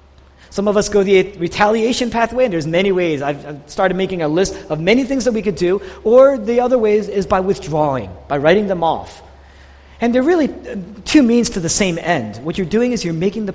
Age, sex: 40-59, male